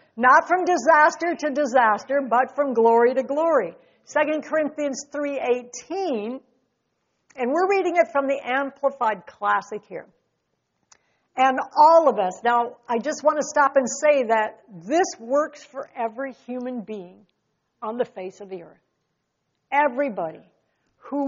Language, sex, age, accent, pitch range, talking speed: English, female, 60-79, American, 235-300 Hz, 140 wpm